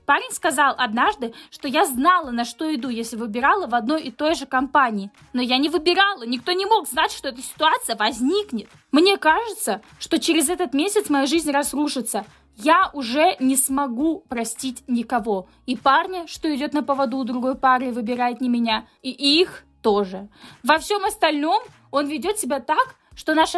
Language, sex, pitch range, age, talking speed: Russian, female, 250-335 Hz, 20-39, 170 wpm